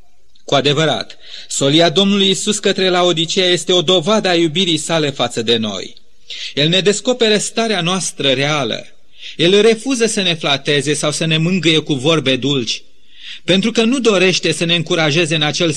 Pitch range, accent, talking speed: 150-200 Hz, native, 165 wpm